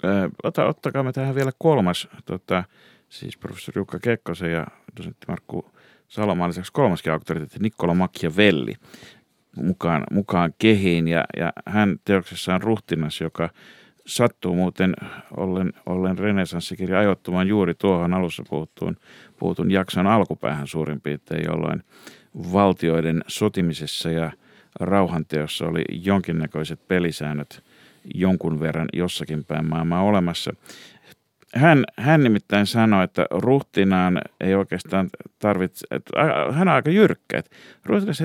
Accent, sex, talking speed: native, male, 115 wpm